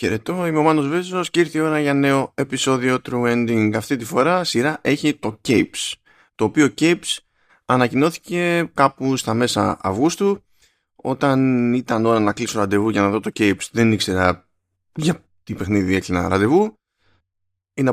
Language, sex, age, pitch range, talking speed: Greek, male, 20-39, 105-160 Hz, 160 wpm